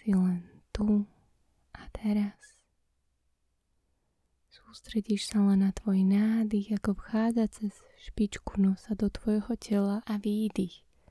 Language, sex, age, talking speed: Slovak, female, 20-39, 110 wpm